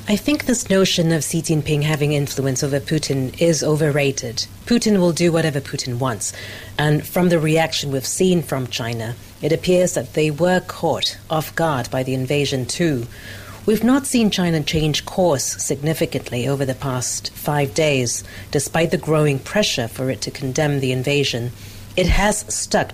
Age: 40-59